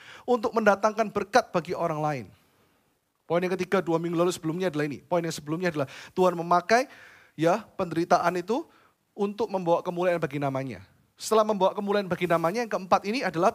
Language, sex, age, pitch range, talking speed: Indonesian, male, 30-49, 175-245 Hz, 170 wpm